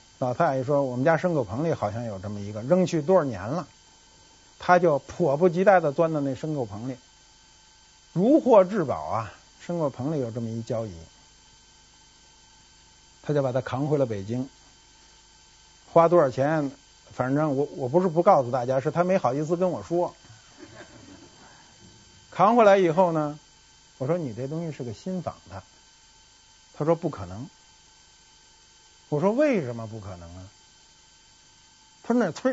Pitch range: 135-215 Hz